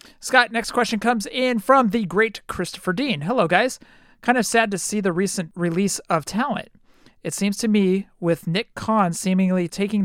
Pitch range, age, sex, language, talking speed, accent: 170-210 Hz, 50-69, male, English, 185 wpm, American